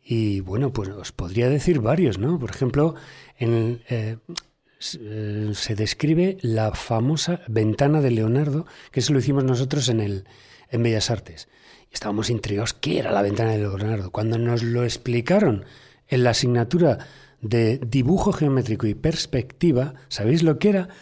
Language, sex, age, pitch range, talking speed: Spanish, male, 40-59, 110-155 Hz, 155 wpm